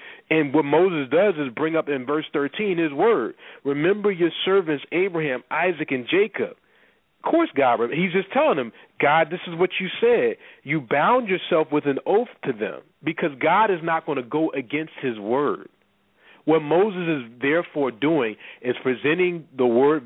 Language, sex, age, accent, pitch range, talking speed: English, male, 40-59, American, 135-185 Hz, 175 wpm